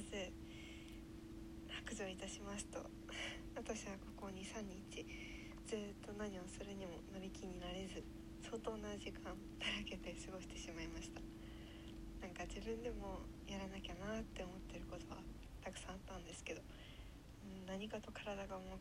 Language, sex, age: Japanese, female, 20-39